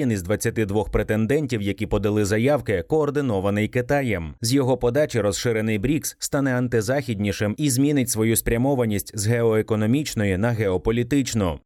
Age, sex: 30-49, male